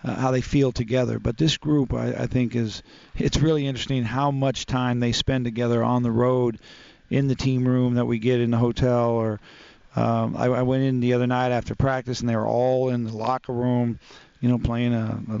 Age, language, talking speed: 40-59, English, 220 wpm